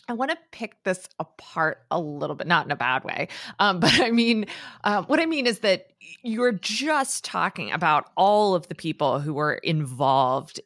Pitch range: 155-210 Hz